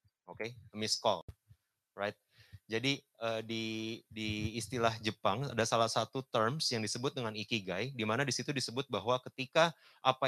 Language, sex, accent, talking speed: Indonesian, male, native, 145 wpm